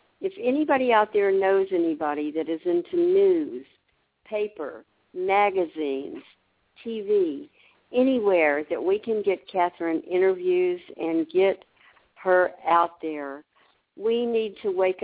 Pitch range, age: 170-240 Hz, 60-79